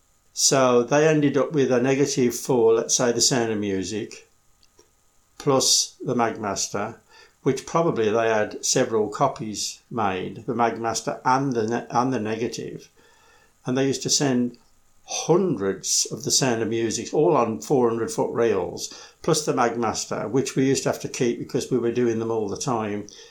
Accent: British